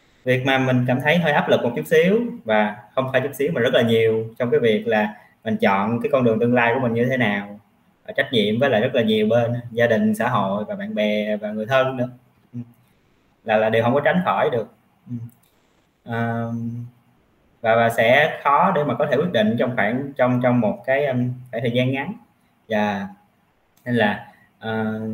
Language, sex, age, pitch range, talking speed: Vietnamese, male, 20-39, 115-135 Hz, 205 wpm